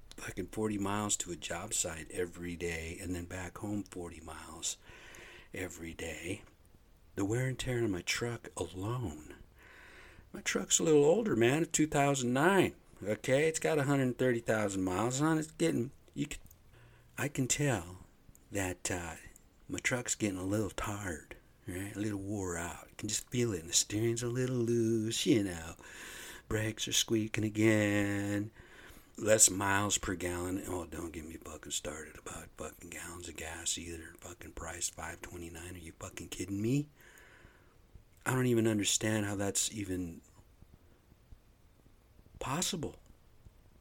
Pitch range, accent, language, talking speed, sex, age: 90-120 Hz, American, English, 150 wpm, male, 60-79